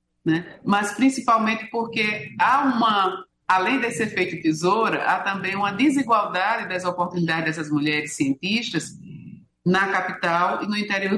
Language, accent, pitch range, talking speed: Portuguese, Brazilian, 160-210 Hz, 130 wpm